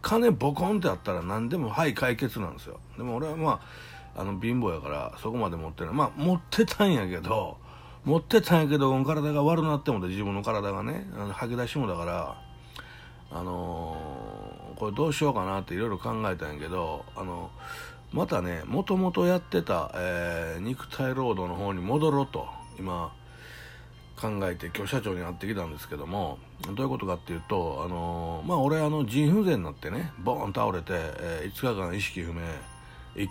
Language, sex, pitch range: Japanese, male, 90-150 Hz